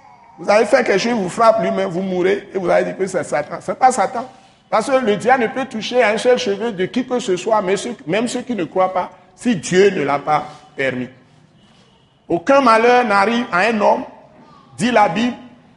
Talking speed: 225 wpm